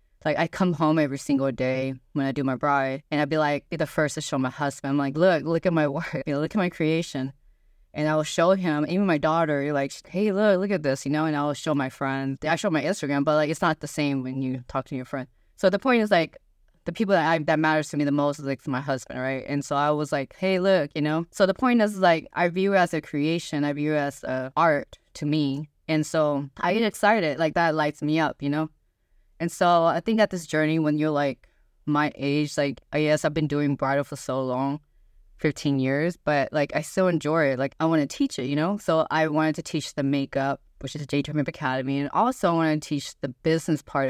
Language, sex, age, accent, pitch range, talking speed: English, female, 20-39, American, 140-165 Hz, 265 wpm